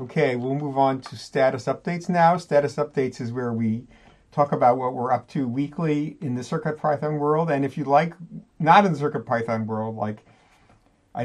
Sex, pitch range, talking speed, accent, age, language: male, 115-145 Hz, 185 wpm, American, 50-69, English